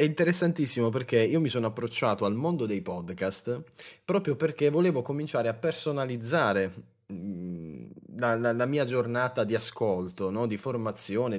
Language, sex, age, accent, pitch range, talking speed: Italian, male, 20-39, native, 100-140 Hz, 140 wpm